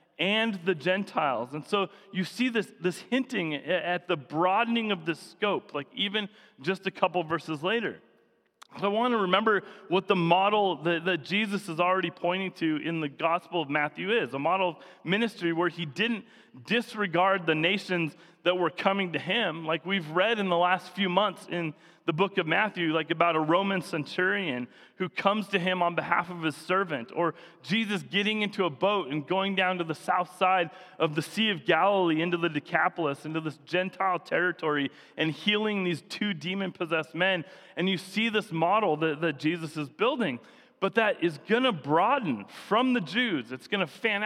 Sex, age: male, 30-49